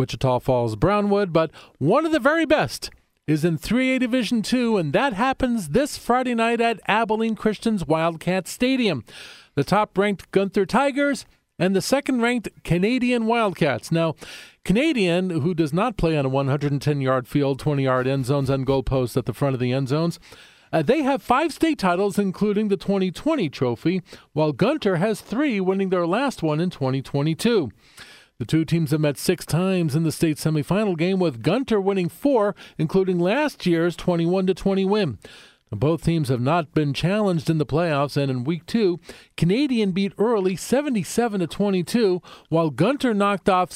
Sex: male